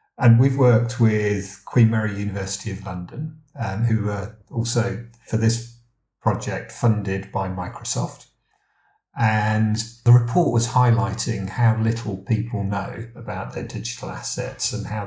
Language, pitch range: English, 110-120 Hz